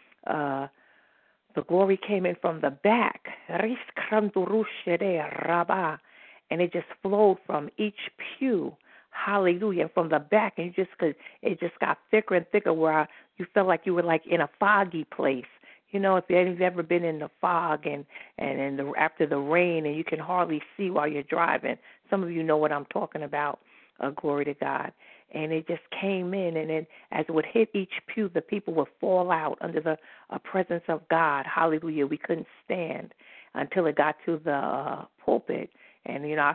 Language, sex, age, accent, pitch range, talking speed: English, female, 50-69, American, 155-190 Hz, 180 wpm